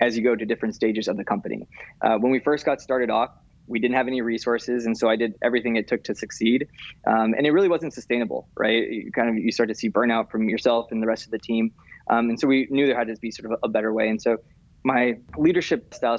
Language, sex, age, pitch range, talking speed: English, male, 20-39, 115-135 Hz, 270 wpm